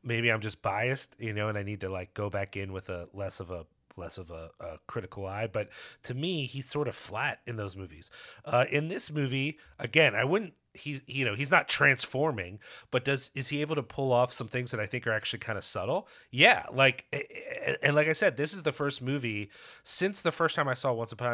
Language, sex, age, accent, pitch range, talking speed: English, male, 30-49, American, 110-145 Hz, 240 wpm